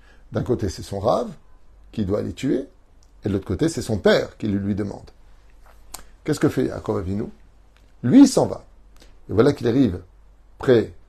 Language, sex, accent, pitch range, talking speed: French, male, French, 95-125 Hz, 185 wpm